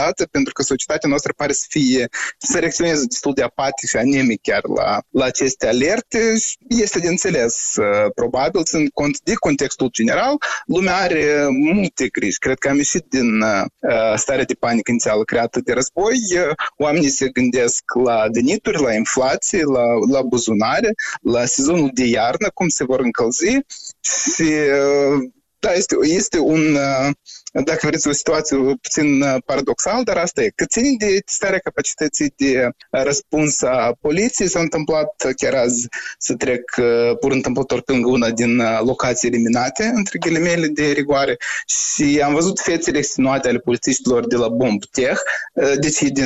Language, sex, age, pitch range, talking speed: Romanian, male, 20-39, 125-175 Hz, 145 wpm